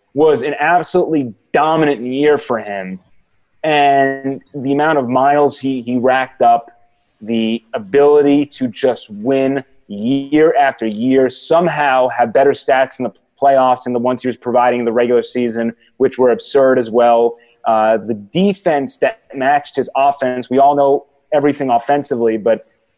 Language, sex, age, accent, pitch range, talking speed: English, male, 30-49, American, 120-145 Hz, 155 wpm